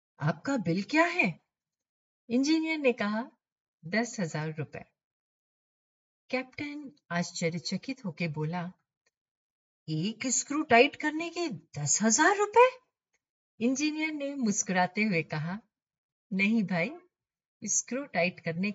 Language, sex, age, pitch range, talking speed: Hindi, female, 50-69, 165-250 Hz, 100 wpm